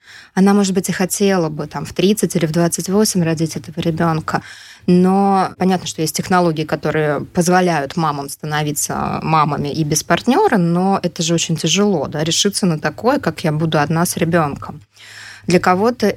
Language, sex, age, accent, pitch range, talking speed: Russian, female, 20-39, native, 165-195 Hz, 165 wpm